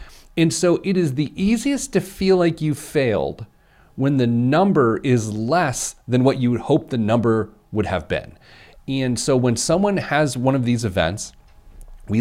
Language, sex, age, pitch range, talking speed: English, male, 40-59, 95-150 Hz, 175 wpm